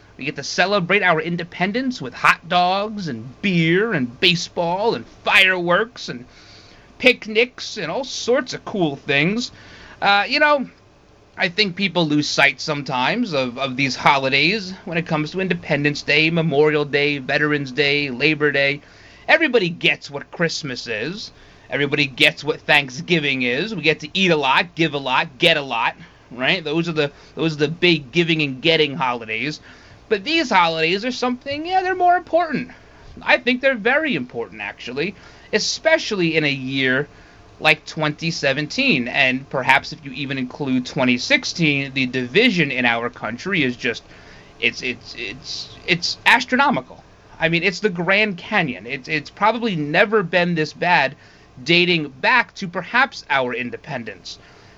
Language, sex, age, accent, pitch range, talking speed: English, male, 30-49, American, 140-195 Hz, 155 wpm